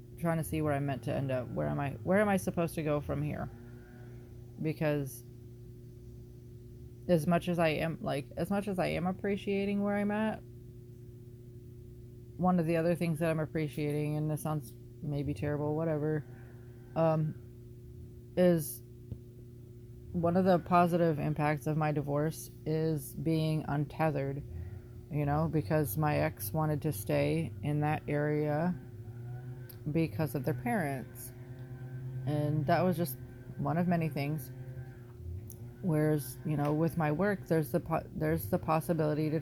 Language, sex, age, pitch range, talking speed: English, female, 20-39, 120-160 Hz, 150 wpm